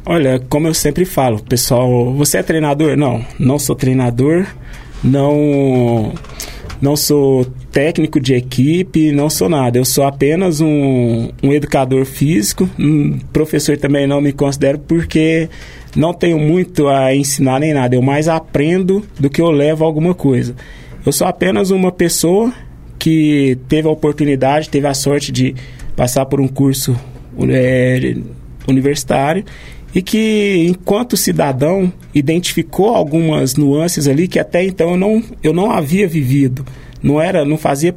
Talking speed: 140 wpm